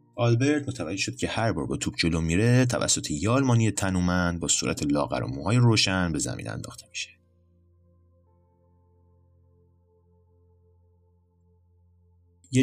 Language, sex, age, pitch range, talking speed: Persian, male, 30-49, 85-100 Hz, 115 wpm